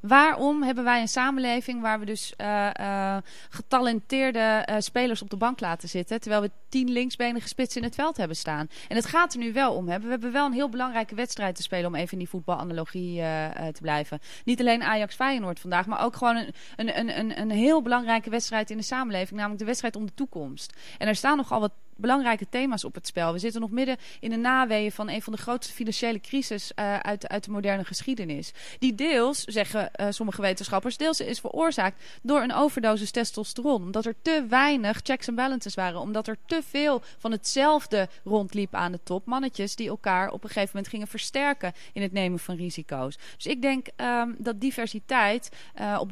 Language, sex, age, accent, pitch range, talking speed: Dutch, female, 20-39, Dutch, 195-250 Hz, 210 wpm